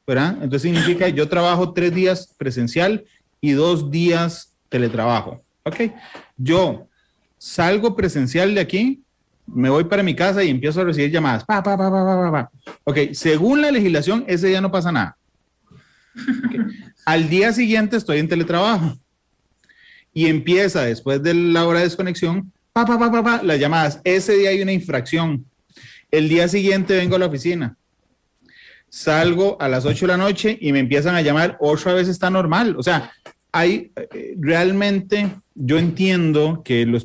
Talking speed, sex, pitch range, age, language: 165 wpm, male, 140-185 Hz, 30-49, Spanish